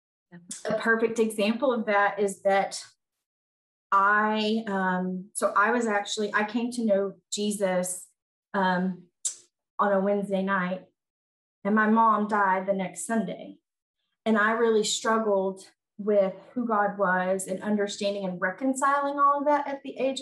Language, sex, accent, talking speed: English, female, American, 140 wpm